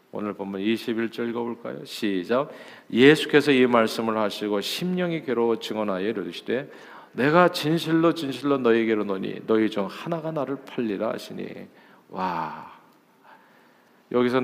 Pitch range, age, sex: 105-140 Hz, 50-69, male